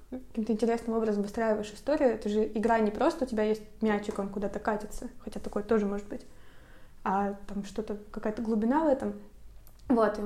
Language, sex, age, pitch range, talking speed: Russian, female, 20-39, 215-245 Hz, 185 wpm